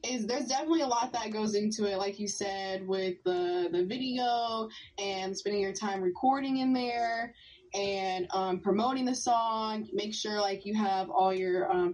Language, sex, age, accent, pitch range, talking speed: English, female, 20-39, American, 190-215 Hz, 180 wpm